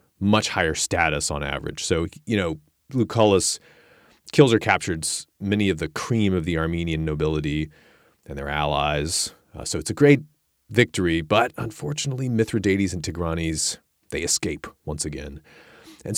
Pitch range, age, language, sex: 80-135 Hz, 30-49, English, male